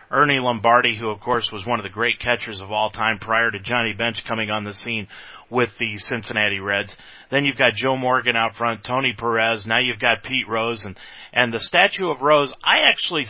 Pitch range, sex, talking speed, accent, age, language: 115-145 Hz, male, 215 wpm, American, 40-59, English